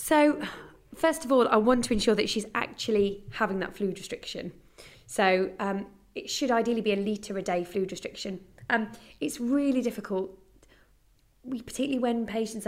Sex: female